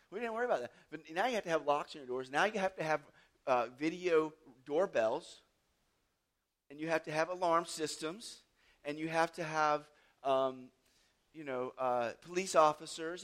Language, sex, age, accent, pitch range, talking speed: English, male, 40-59, American, 135-170 Hz, 185 wpm